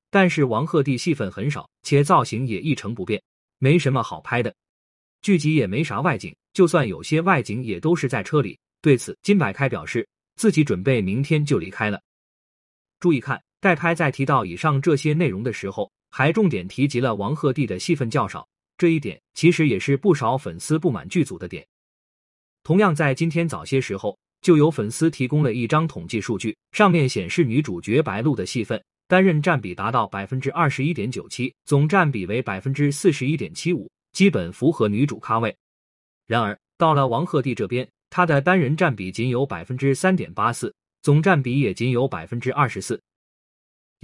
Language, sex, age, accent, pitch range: Chinese, male, 20-39, native, 125-170 Hz